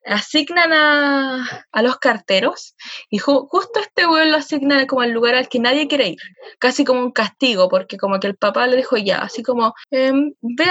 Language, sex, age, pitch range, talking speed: Spanish, female, 20-39, 235-295 Hz, 195 wpm